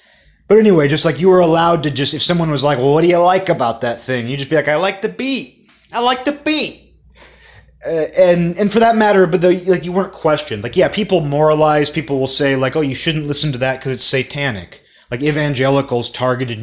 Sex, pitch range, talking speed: male, 120-165 Hz, 235 wpm